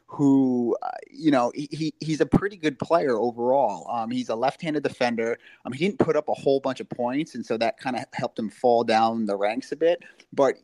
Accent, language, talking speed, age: American, English, 230 wpm, 30-49